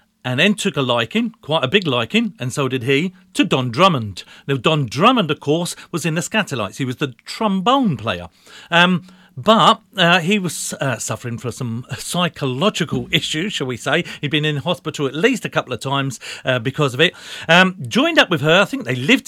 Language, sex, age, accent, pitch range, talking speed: English, male, 40-59, British, 135-200 Hz, 210 wpm